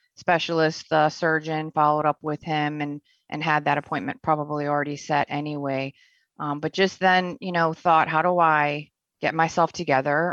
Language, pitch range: English, 150-165 Hz